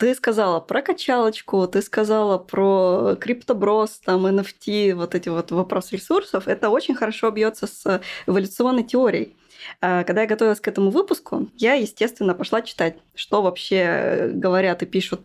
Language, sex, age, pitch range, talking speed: Russian, female, 20-39, 185-230 Hz, 145 wpm